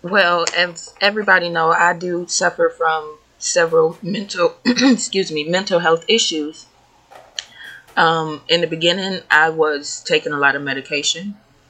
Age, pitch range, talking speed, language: 20-39, 155-225 Hz, 135 wpm, English